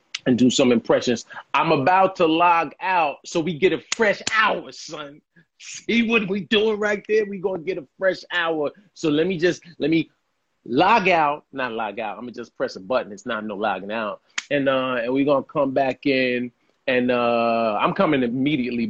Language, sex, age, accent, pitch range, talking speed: English, male, 30-49, American, 130-170 Hz, 210 wpm